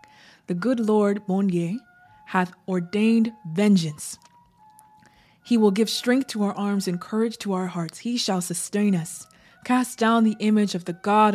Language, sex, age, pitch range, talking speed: English, female, 20-39, 170-210 Hz, 160 wpm